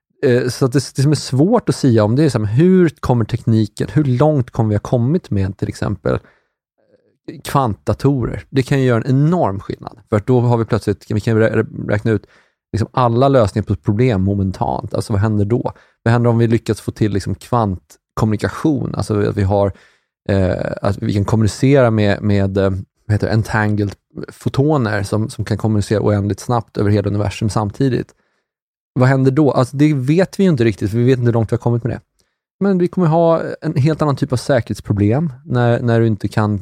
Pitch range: 105-135 Hz